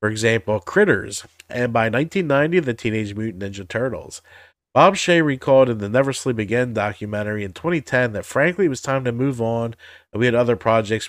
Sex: male